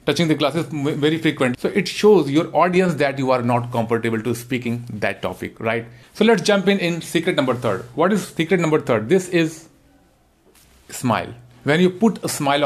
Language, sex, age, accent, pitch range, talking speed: Hindi, male, 40-59, native, 125-165 Hz, 195 wpm